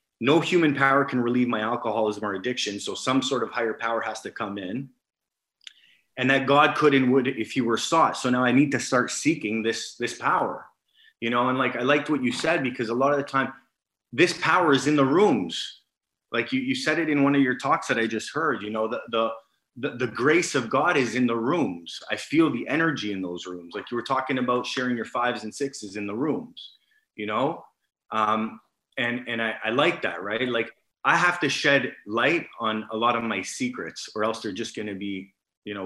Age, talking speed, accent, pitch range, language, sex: 30-49, 230 wpm, American, 110-135 Hz, English, male